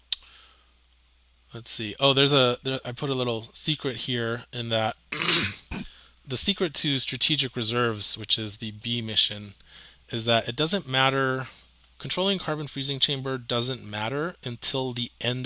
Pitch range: 105-135 Hz